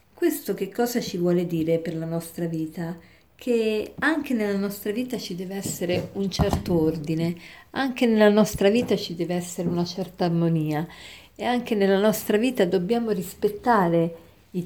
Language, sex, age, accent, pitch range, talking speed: Italian, female, 50-69, native, 175-210 Hz, 160 wpm